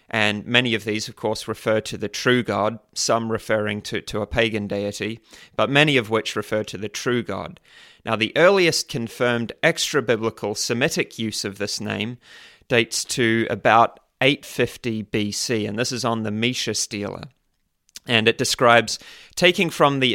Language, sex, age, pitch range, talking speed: English, male, 30-49, 110-130 Hz, 165 wpm